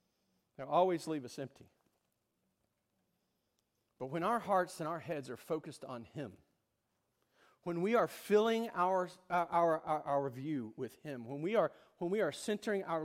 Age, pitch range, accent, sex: 40-59, 135-180 Hz, American, male